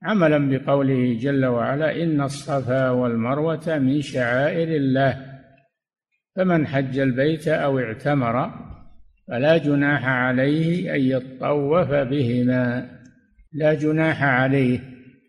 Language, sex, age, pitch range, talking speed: Arabic, male, 60-79, 130-155 Hz, 95 wpm